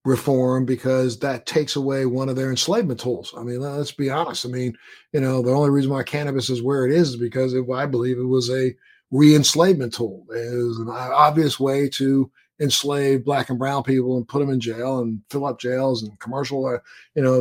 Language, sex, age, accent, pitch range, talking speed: English, male, 50-69, American, 125-145 Hz, 210 wpm